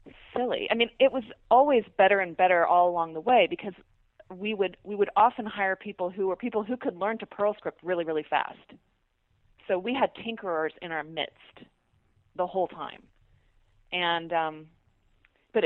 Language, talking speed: English, 175 wpm